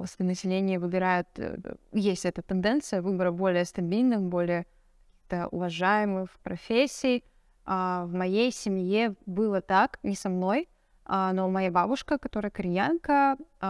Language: Russian